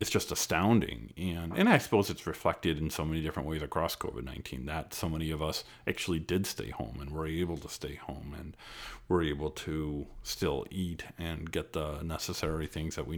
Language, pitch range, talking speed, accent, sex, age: English, 75-100 Hz, 200 wpm, American, male, 50-69